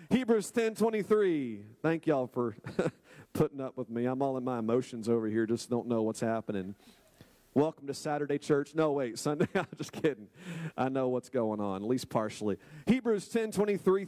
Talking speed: 185 wpm